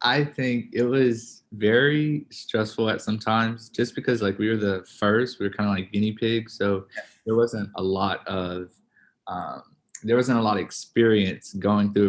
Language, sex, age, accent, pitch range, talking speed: English, male, 20-39, American, 95-110 Hz, 190 wpm